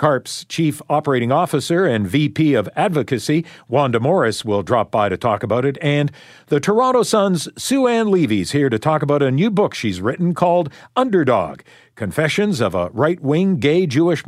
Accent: American